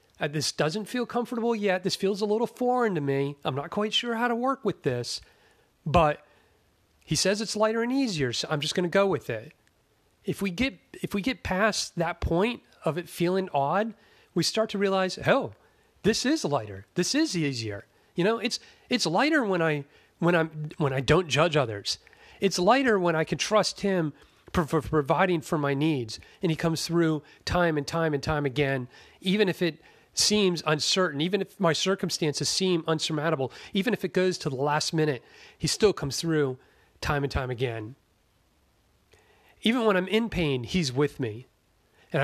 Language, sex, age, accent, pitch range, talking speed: English, male, 40-59, American, 145-205 Hz, 190 wpm